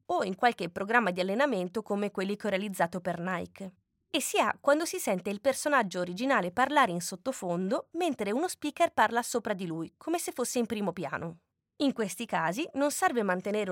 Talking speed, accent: 195 wpm, native